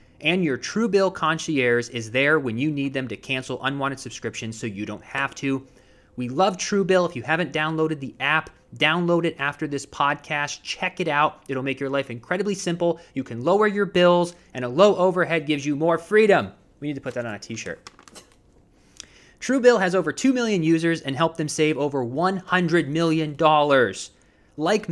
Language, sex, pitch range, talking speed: English, male, 140-185 Hz, 185 wpm